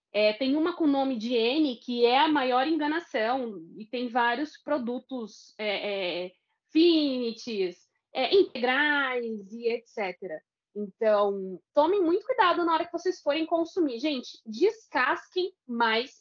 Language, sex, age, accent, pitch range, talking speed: Portuguese, female, 20-39, Brazilian, 230-305 Hz, 120 wpm